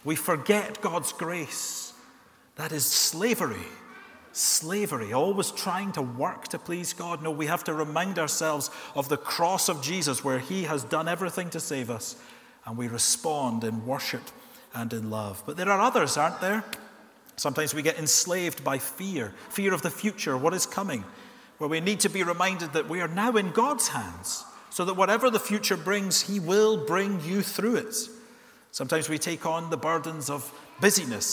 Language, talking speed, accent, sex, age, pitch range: English, 180 wpm, British, male, 40-59, 125-185 Hz